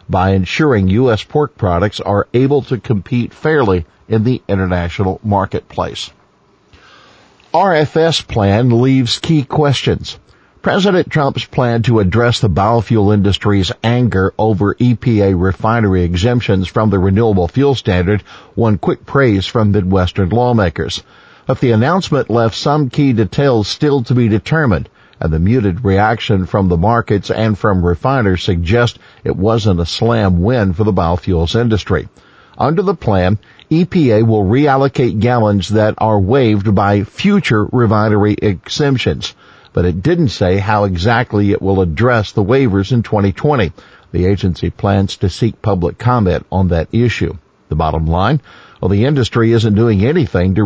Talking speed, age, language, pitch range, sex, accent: 145 wpm, 50-69, English, 95-120 Hz, male, American